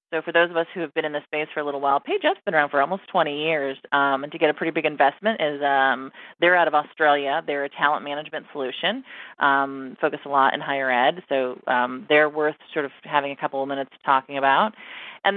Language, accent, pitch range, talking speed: English, American, 140-165 Hz, 240 wpm